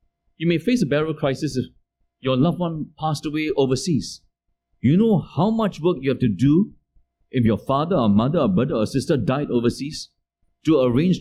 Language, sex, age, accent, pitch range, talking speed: English, male, 50-69, Malaysian, 120-185 Hz, 185 wpm